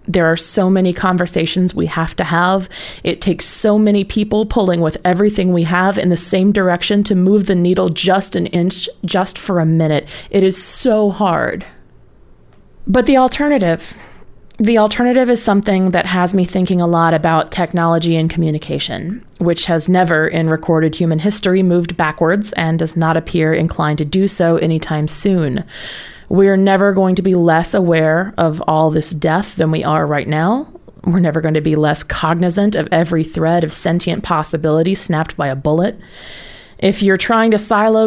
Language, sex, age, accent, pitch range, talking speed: English, female, 30-49, American, 165-200 Hz, 175 wpm